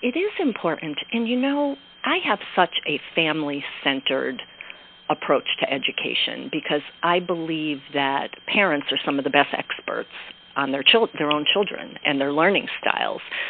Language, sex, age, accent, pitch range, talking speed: English, female, 40-59, American, 140-180 Hz, 155 wpm